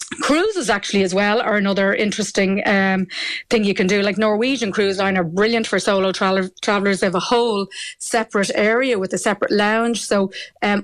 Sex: female